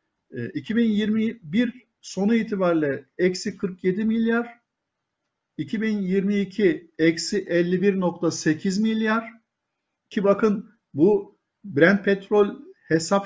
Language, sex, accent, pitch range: Turkish, male, native, 165-210 Hz